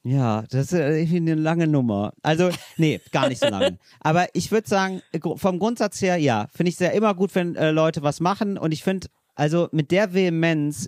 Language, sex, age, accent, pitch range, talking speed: German, male, 40-59, German, 135-170 Hz, 210 wpm